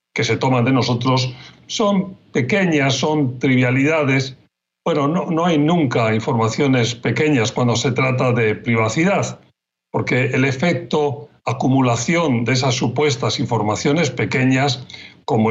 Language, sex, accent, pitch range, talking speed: Spanish, male, Spanish, 120-145 Hz, 120 wpm